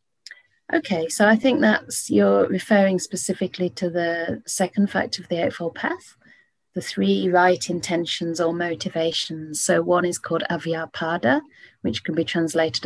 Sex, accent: female, British